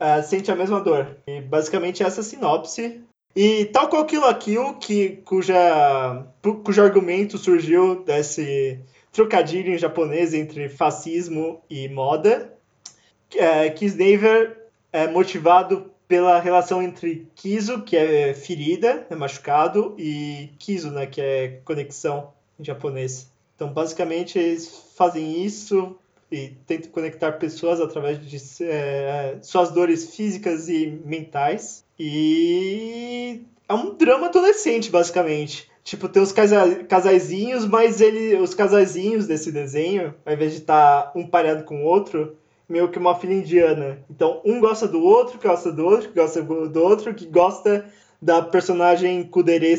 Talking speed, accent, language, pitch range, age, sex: 140 wpm, Brazilian, Portuguese, 155-200 Hz, 20-39, male